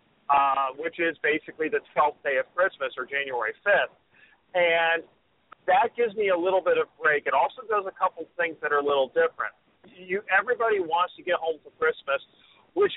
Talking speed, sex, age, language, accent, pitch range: 190 wpm, male, 40-59, English, American, 160-205 Hz